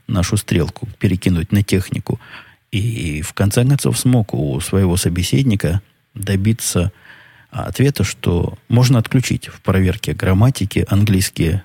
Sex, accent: male, native